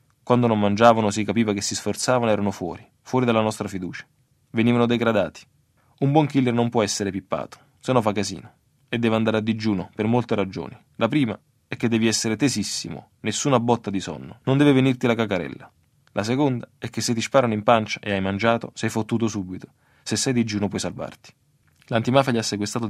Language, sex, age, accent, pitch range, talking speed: Italian, male, 20-39, native, 105-120 Hz, 195 wpm